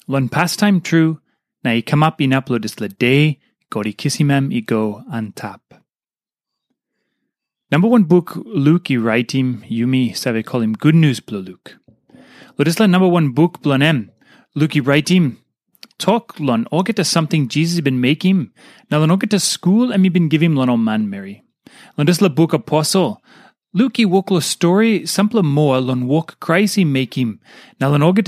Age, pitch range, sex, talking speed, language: 30-49, 130-180 Hz, male, 175 wpm, English